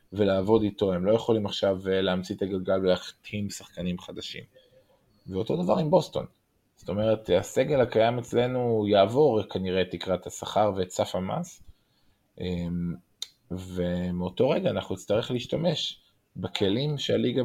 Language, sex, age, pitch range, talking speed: Hebrew, male, 20-39, 95-115 Hz, 125 wpm